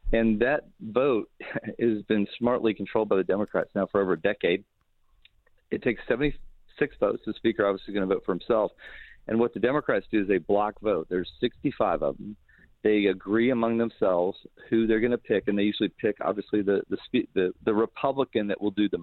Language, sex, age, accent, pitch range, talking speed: English, male, 40-59, American, 100-115 Hz, 195 wpm